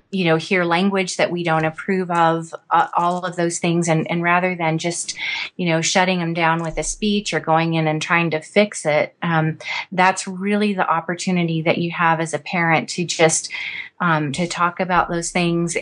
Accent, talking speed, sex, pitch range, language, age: American, 205 wpm, female, 165-185 Hz, English, 30-49